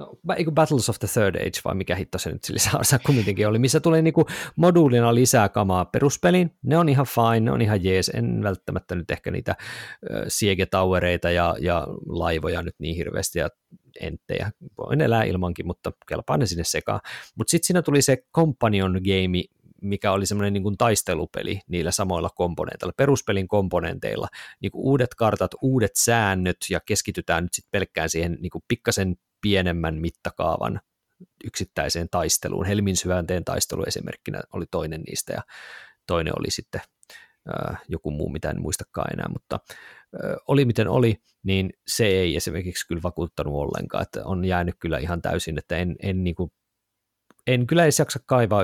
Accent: native